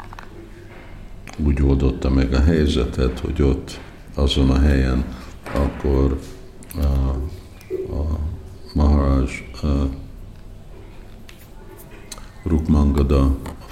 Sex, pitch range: male, 70-90 Hz